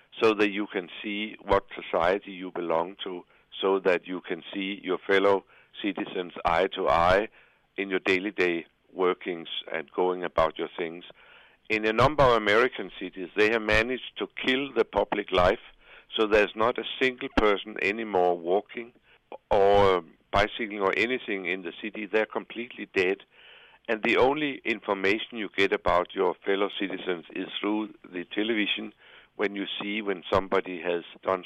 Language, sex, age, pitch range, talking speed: English, male, 60-79, 95-115 Hz, 160 wpm